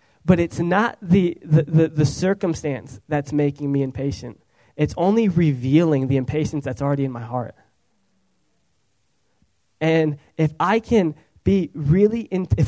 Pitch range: 130-160 Hz